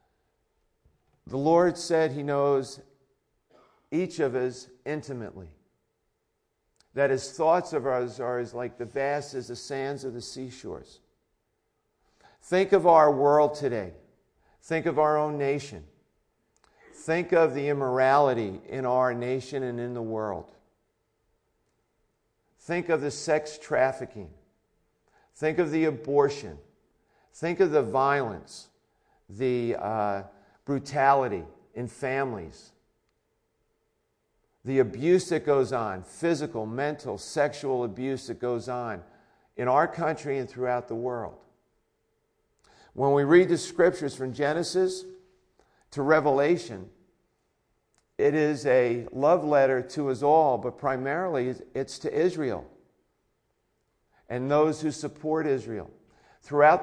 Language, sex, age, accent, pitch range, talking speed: English, male, 50-69, American, 125-155 Hz, 120 wpm